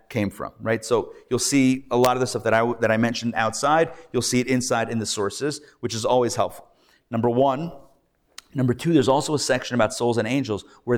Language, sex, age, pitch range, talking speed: English, male, 30-49, 110-135 Hz, 225 wpm